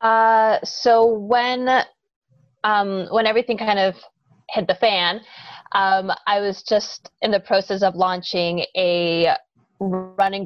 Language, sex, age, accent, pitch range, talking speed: English, female, 20-39, American, 180-225 Hz, 125 wpm